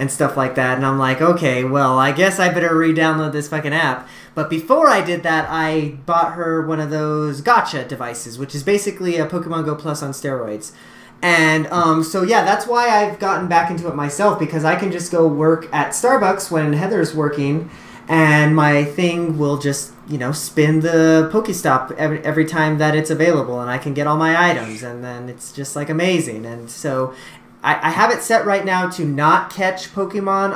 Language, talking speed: English, 200 wpm